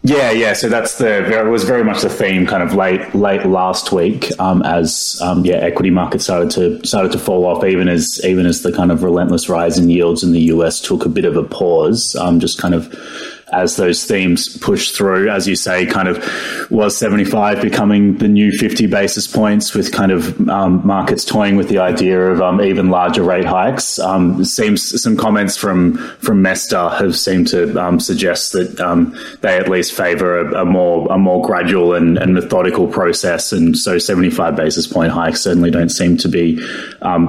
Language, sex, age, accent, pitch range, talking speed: English, male, 20-39, Australian, 85-95 Hz, 205 wpm